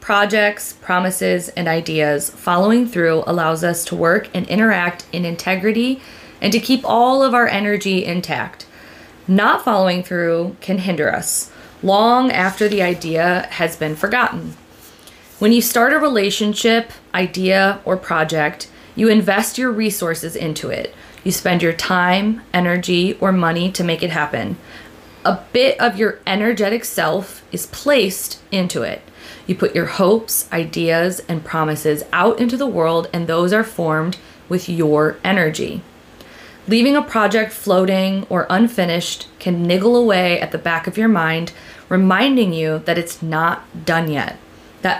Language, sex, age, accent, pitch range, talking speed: English, female, 20-39, American, 170-215 Hz, 150 wpm